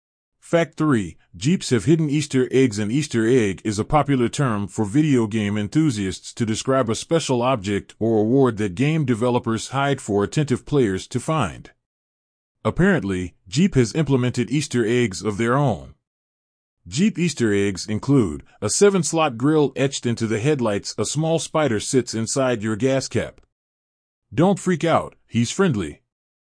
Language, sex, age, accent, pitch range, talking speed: English, male, 30-49, American, 105-140 Hz, 150 wpm